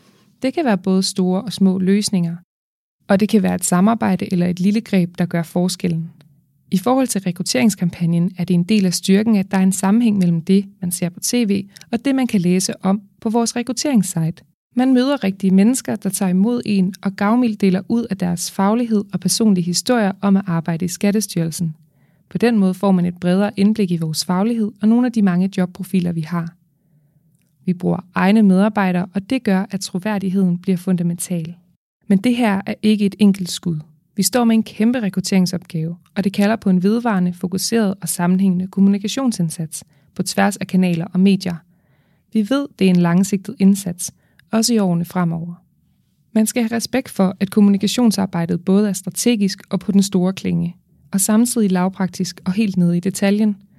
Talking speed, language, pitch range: 185 wpm, Danish, 175-210 Hz